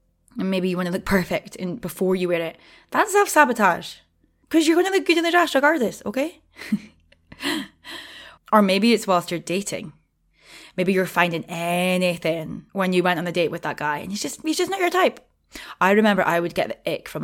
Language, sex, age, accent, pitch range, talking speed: English, female, 20-39, British, 175-210 Hz, 210 wpm